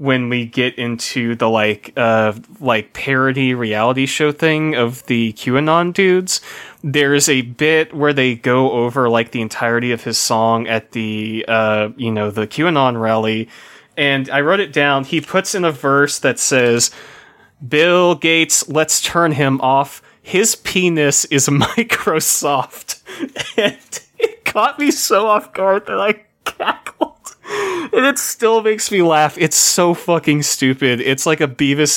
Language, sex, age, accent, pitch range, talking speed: English, male, 30-49, American, 120-160 Hz, 155 wpm